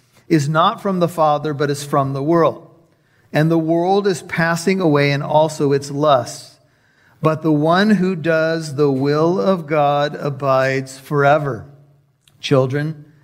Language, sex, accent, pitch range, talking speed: English, male, American, 145-170 Hz, 145 wpm